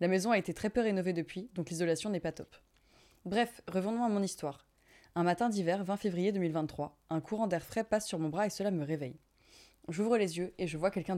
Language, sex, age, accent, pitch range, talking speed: French, female, 20-39, French, 160-195 Hz, 230 wpm